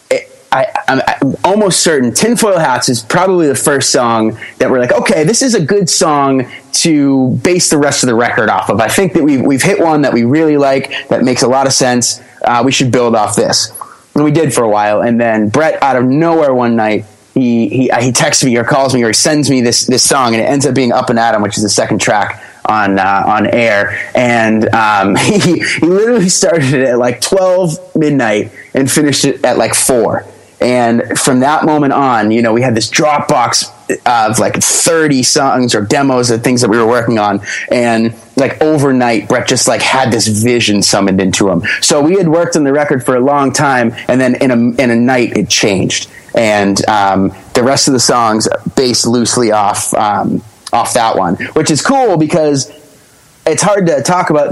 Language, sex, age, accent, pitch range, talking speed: English, male, 30-49, American, 115-150 Hz, 215 wpm